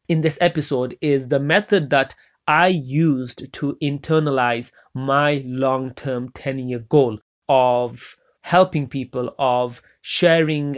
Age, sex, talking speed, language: 30-49, male, 110 wpm, English